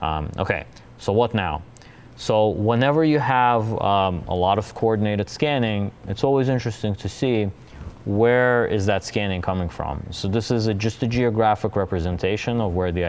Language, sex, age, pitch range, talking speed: English, male, 20-39, 90-120 Hz, 165 wpm